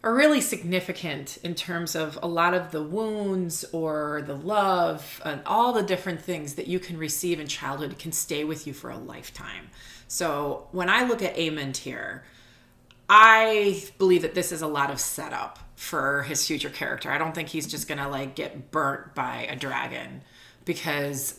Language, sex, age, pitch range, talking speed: English, female, 30-49, 145-175 Hz, 180 wpm